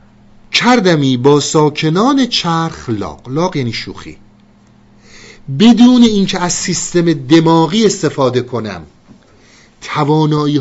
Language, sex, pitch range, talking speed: Persian, male, 135-185 Hz, 85 wpm